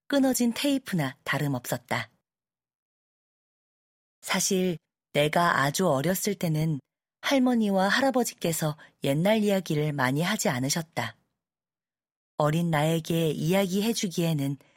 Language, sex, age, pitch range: Korean, female, 40-59, 150-205 Hz